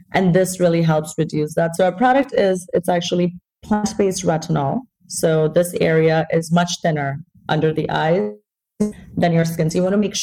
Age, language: 30-49, English